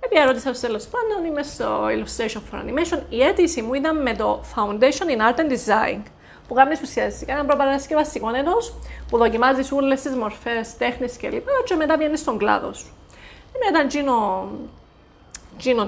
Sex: female